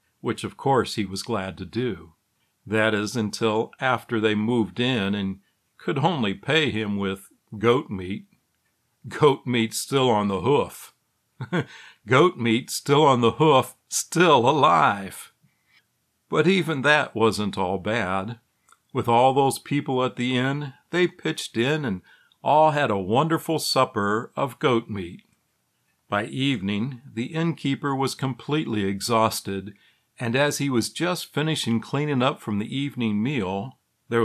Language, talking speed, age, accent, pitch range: English, 145 wpm, 60-79, American, 105-140 Hz